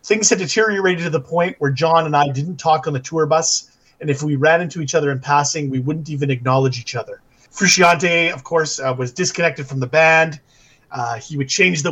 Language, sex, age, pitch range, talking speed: English, male, 30-49, 140-180 Hz, 225 wpm